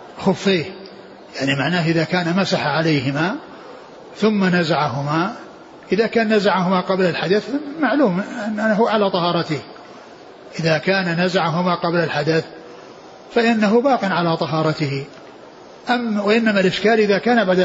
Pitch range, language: 160-205 Hz, Arabic